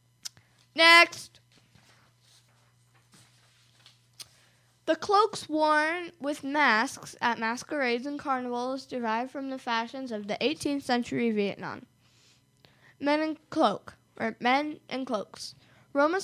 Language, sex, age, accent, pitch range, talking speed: English, female, 10-29, American, 195-280 Hz, 100 wpm